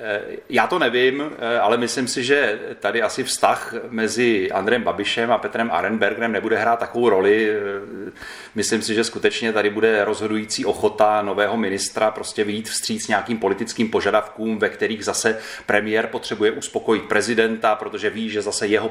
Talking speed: 150 wpm